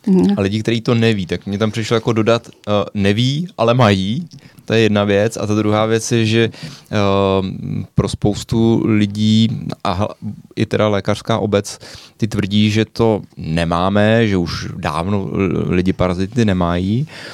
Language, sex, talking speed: Czech, male, 150 wpm